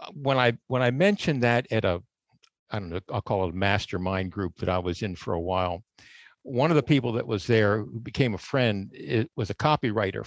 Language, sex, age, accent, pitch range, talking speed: English, male, 50-69, American, 105-140 Hz, 230 wpm